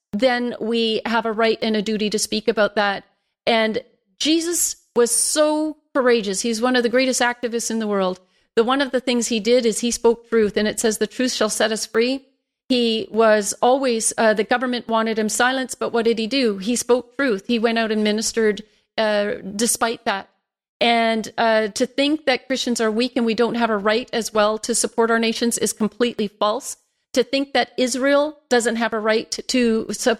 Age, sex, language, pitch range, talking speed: 40-59, female, English, 220-245 Hz, 205 wpm